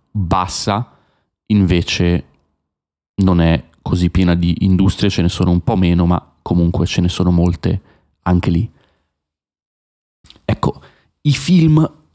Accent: native